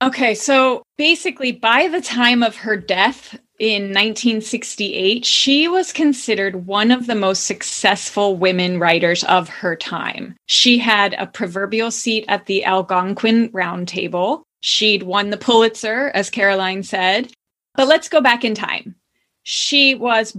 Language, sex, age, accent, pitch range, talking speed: English, female, 20-39, American, 190-235 Hz, 140 wpm